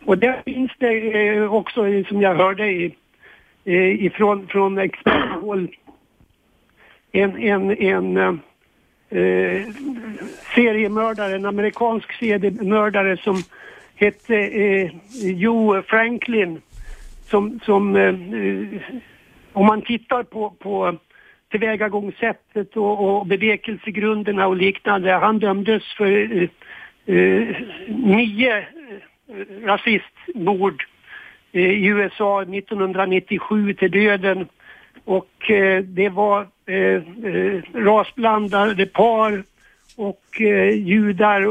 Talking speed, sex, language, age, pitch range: 90 wpm, male, Swedish, 60-79, 190-220 Hz